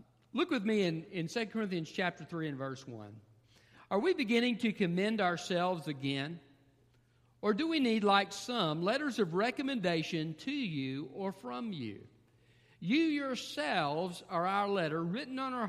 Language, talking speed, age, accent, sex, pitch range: English, 155 wpm, 50-69, American, male, 135-210 Hz